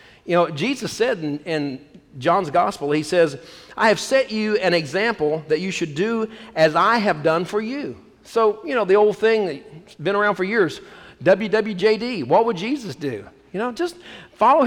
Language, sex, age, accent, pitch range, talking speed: English, male, 50-69, American, 165-225 Hz, 190 wpm